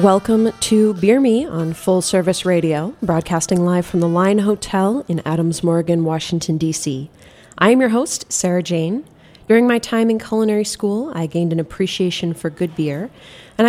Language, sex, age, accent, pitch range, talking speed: English, female, 30-49, American, 160-200 Hz, 170 wpm